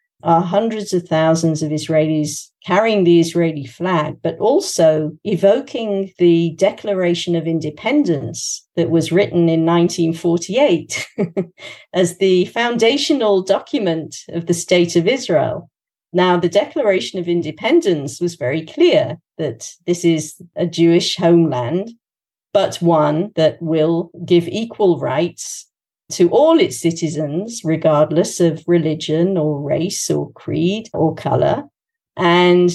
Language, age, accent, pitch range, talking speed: English, 50-69, British, 160-195 Hz, 120 wpm